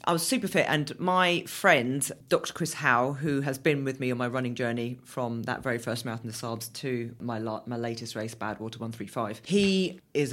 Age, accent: 40-59, British